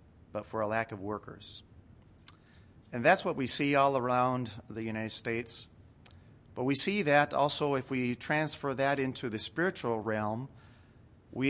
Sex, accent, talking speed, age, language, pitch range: male, American, 155 wpm, 40-59, English, 110-145 Hz